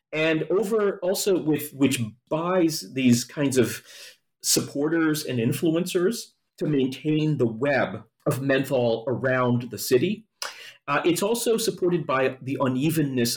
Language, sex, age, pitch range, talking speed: English, male, 40-59, 120-155 Hz, 125 wpm